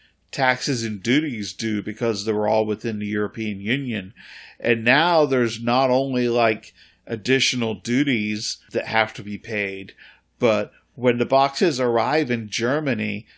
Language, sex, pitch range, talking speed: English, male, 110-125 Hz, 140 wpm